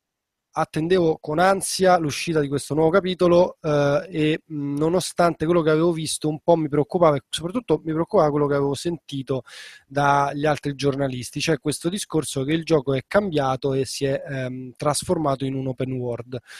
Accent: native